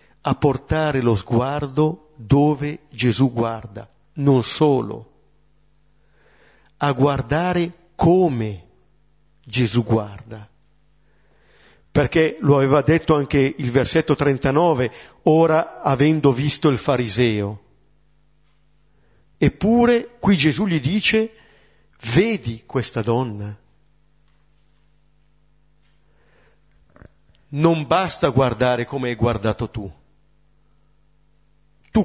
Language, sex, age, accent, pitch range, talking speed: Italian, male, 50-69, native, 120-170 Hz, 80 wpm